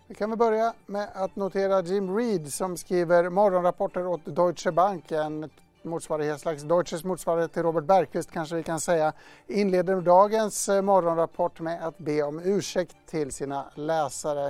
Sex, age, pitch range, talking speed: male, 60-79, 155-190 Hz, 155 wpm